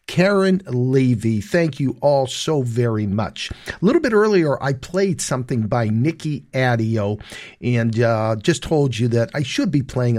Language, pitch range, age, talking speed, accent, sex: English, 110-150 Hz, 50-69, 165 wpm, American, male